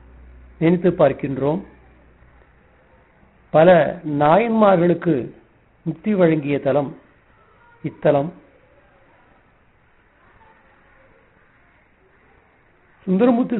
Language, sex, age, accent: Tamil, male, 50-69, native